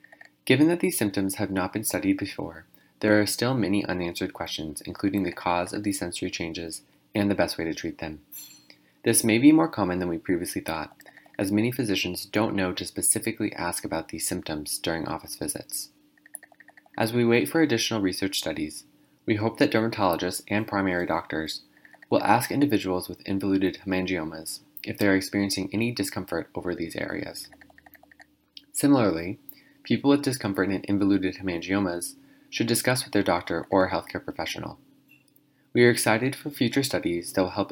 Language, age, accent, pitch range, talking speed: English, 20-39, American, 90-125 Hz, 165 wpm